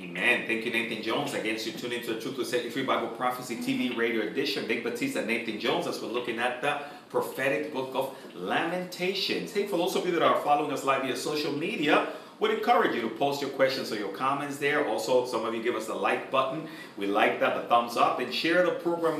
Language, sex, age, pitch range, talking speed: English, male, 30-49, 125-175 Hz, 235 wpm